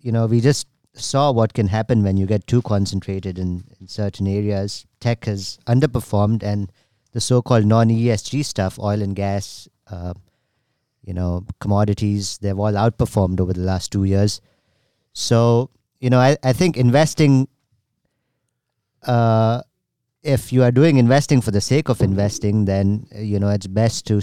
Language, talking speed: English, 160 wpm